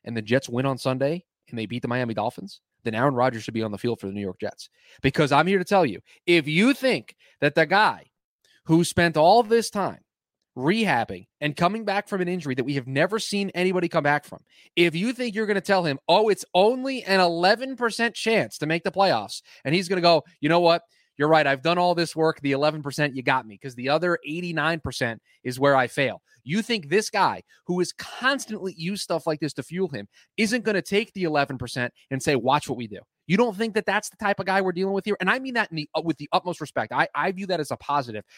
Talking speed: 250 wpm